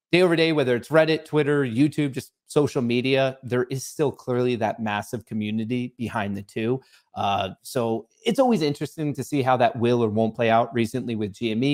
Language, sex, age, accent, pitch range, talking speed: English, male, 30-49, American, 115-150 Hz, 195 wpm